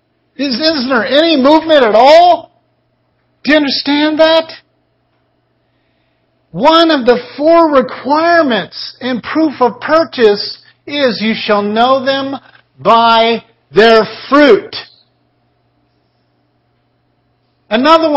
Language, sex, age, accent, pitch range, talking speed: English, male, 50-69, American, 165-240 Hz, 95 wpm